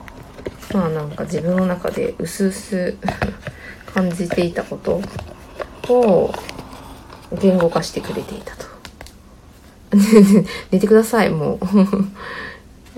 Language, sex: Japanese, female